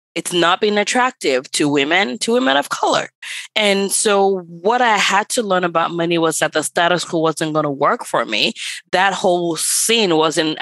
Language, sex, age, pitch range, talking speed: English, female, 20-39, 165-215 Hz, 190 wpm